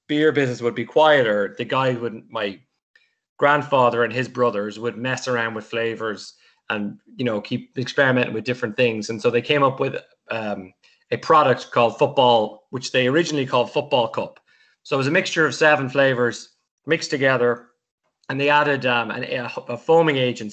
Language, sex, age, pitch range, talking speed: English, male, 20-39, 115-140 Hz, 180 wpm